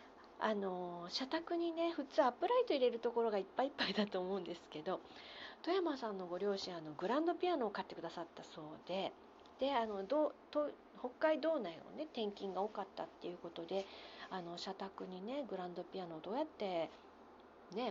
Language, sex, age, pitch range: Japanese, female, 40-59, 185-300 Hz